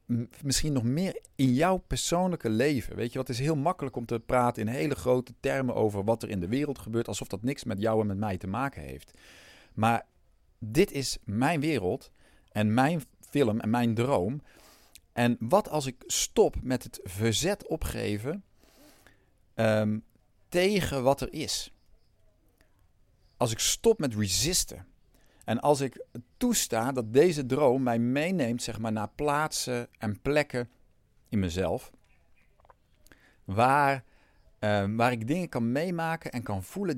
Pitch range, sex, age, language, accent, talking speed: 105-145 Hz, male, 50-69, Dutch, Dutch, 155 wpm